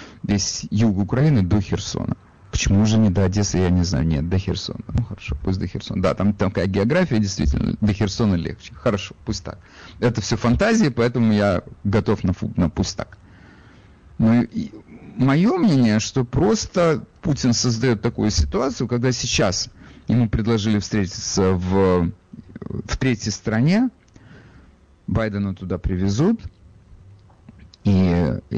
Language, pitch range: Russian, 90-120 Hz